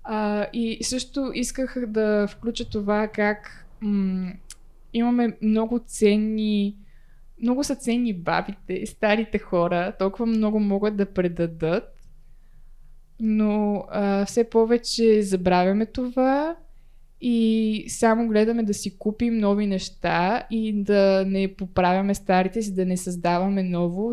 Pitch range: 180-220 Hz